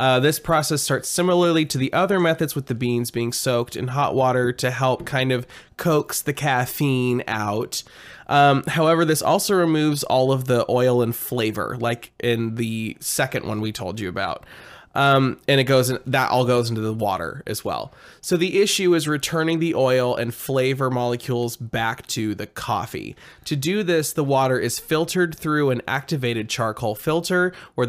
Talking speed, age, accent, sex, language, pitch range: 185 wpm, 20-39, American, male, English, 120-155 Hz